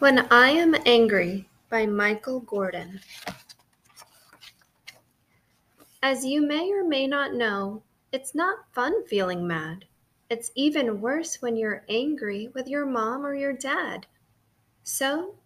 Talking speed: 125 wpm